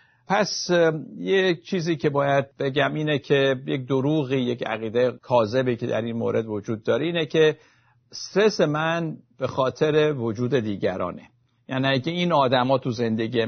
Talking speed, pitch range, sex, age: 145 wpm, 115-145 Hz, male, 50-69